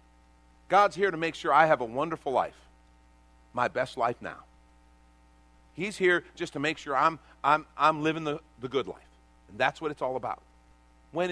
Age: 50-69